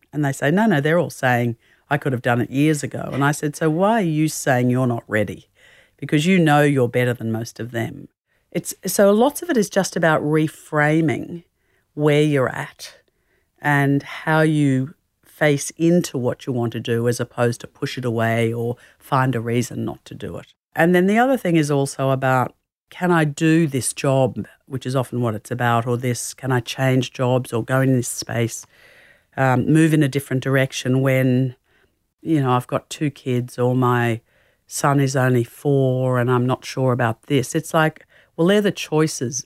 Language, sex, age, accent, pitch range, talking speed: English, female, 50-69, Australian, 120-155 Hz, 200 wpm